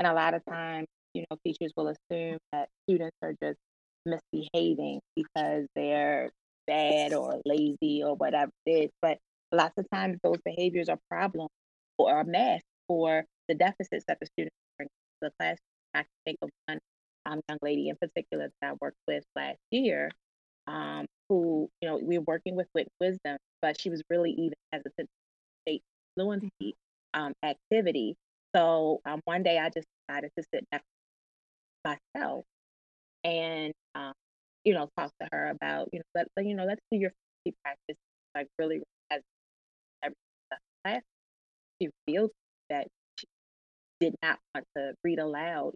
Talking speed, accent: 165 wpm, American